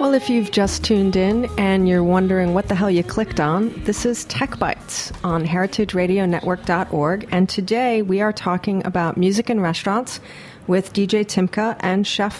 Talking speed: 170 wpm